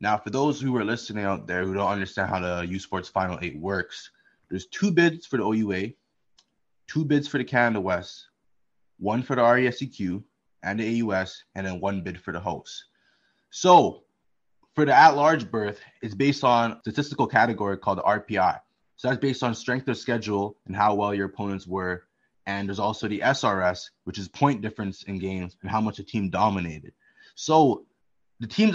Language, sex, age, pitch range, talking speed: English, male, 20-39, 100-125 Hz, 190 wpm